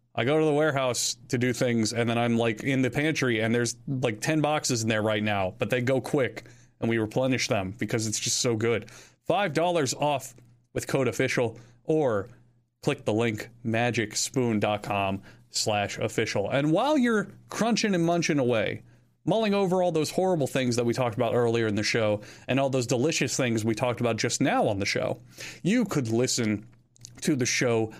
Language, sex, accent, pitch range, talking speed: English, male, American, 115-140 Hz, 190 wpm